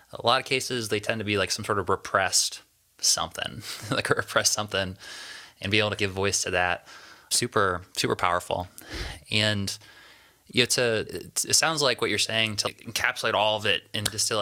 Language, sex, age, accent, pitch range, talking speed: English, male, 20-39, American, 95-110 Hz, 195 wpm